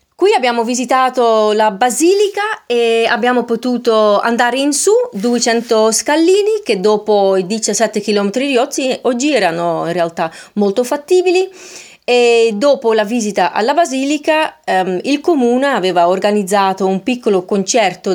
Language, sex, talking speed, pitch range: Italian, female, 130 wpm, 195-260 Hz